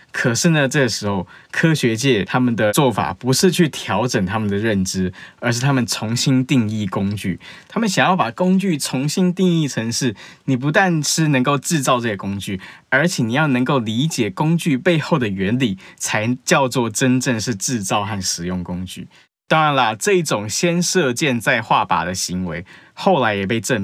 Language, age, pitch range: Chinese, 20-39, 105-160 Hz